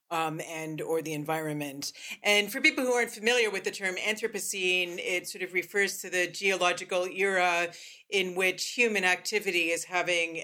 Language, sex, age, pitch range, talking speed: English, female, 40-59, 160-185 Hz, 165 wpm